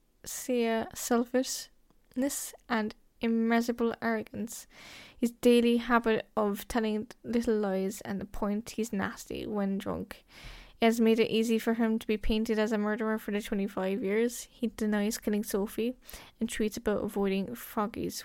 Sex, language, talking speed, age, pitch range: female, English, 145 wpm, 10-29, 210-235 Hz